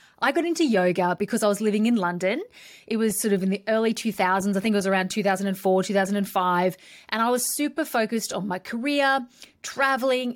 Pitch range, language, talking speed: 195-240 Hz, English, 195 wpm